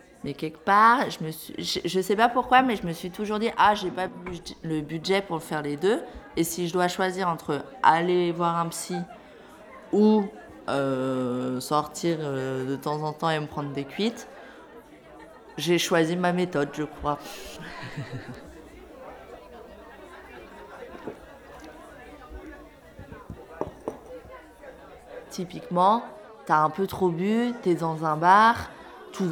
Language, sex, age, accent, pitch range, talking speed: French, female, 20-39, French, 170-225 Hz, 135 wpm